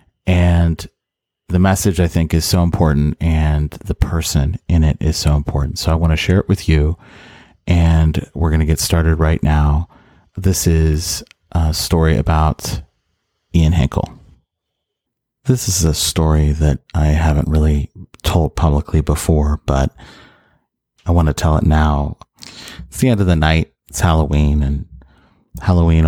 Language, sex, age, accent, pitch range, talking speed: English, male, 30-49, American, 75-90 Hz, 155 wpm